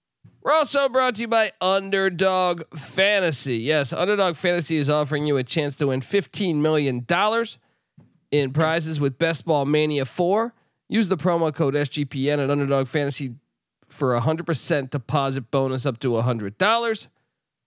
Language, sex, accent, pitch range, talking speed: English, male, American, 140-190 Hz, 155 wpm